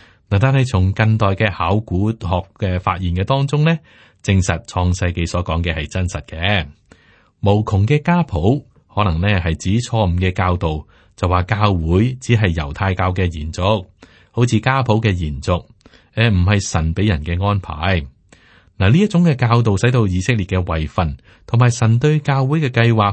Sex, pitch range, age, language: male, 85-115 Hz, 30-49, Chinese